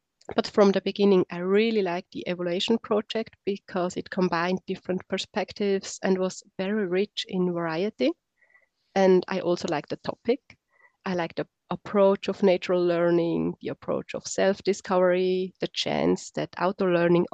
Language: English